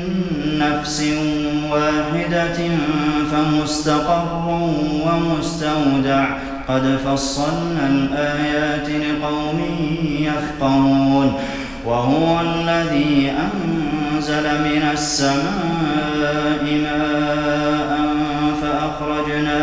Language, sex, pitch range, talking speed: Arabic, male, 140-150 Hz, 50 wpm